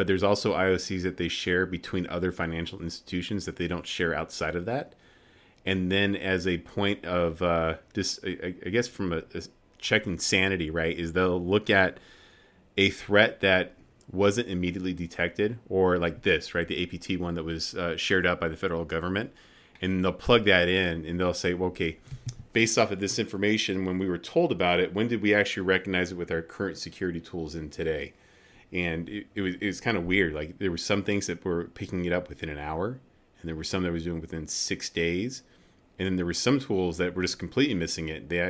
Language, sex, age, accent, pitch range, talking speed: English, male, 30-49, American, 85-95 Hz, 215 wpm